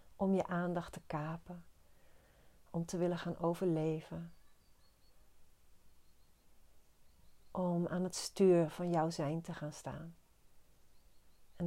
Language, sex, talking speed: Dutch, female, 110 wpm